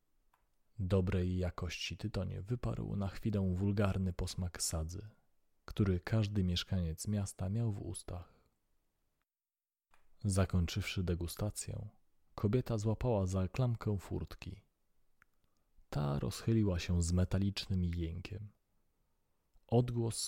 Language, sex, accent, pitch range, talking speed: Polish, male, native, 90-110 Hz, 90 wpm